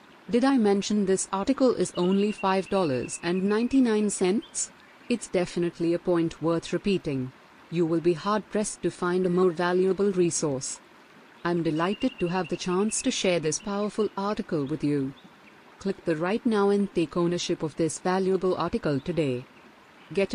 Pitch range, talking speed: 160-200 Hz, 160 wpm